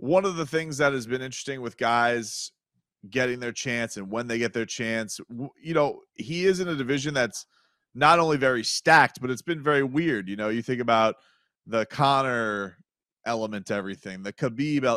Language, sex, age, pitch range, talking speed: English, male, 30-49, 110-145 Hz, 190 wpm